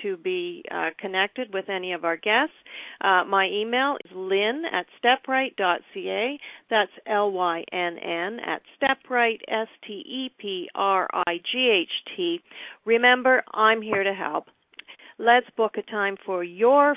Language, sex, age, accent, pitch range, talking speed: English, female, 50-69, American, 190-250 Hz, 115 wpm